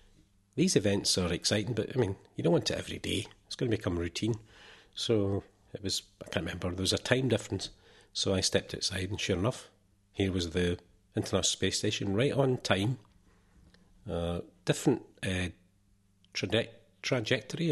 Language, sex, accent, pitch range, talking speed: English, male, British, 95-110 Hz, 165 wpm